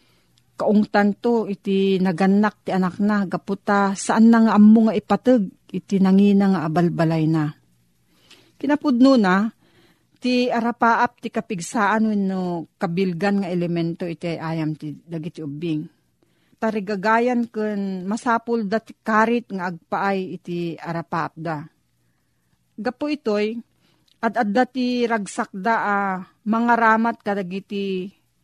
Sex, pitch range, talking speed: female, 175-225 Hz, 120 wpm